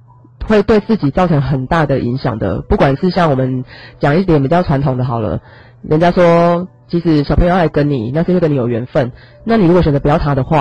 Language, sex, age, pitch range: Chinese, female, 30-49, 130-175 Hz